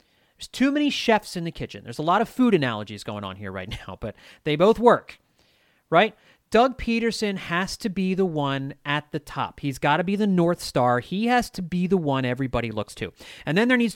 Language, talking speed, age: English, 230 wpm, 30-49